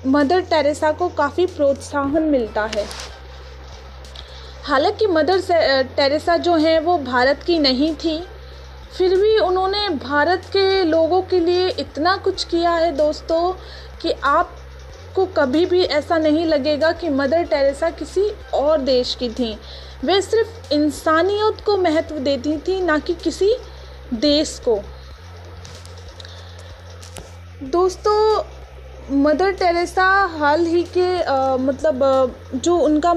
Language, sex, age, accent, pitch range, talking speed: Hindi, female, 30-49, native, 275-355 Hz, 125 wpm